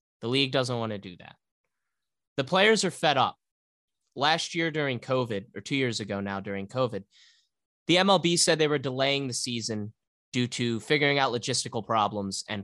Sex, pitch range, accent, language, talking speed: male, 100-135 Hz, American, English, 180 wpm